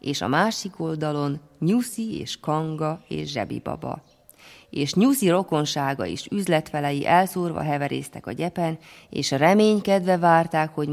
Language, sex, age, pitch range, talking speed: Hungarian, female, 30-49, 145-180 Hz, 120 wpm